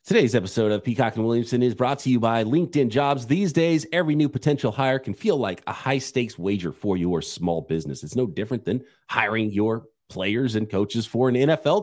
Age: 30-49